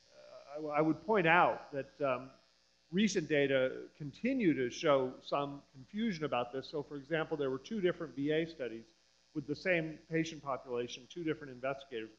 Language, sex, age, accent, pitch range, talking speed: English, male, 40-59, American, 120-170 Hz, 160 wpm